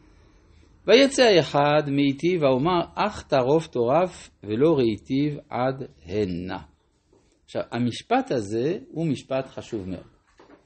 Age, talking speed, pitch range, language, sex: 50-69, 100 wpm, 100-155 Hz, Hebrew, male